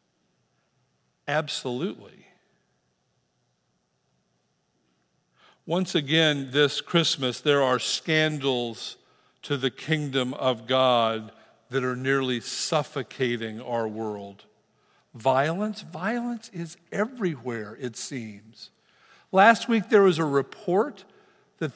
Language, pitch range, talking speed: English, 135-200 Hz, 90 wpm